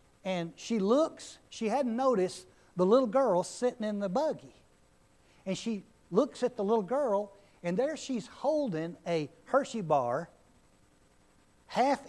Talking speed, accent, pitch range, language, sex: 140 wpm, American, 165-245 Hz, English, male